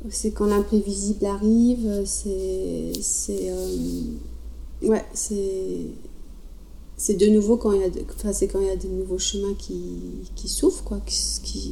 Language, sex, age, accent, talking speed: French, female, 40-59, French, 155 wpm